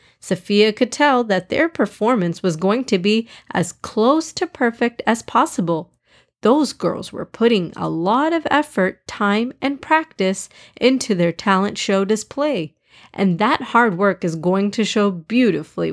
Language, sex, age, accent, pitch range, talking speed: English, female, 30-49, American, 185-250 Hz, 155 wpm